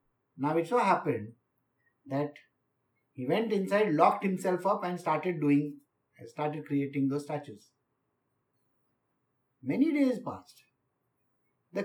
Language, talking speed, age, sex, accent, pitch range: English, 110 wpm, 50-69, male, Indian, 135-220 Hz